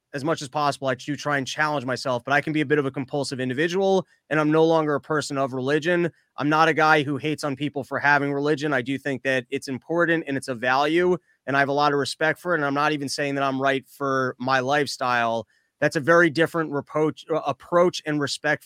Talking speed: 250 wpm